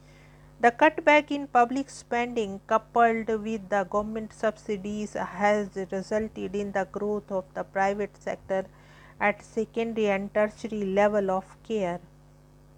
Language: English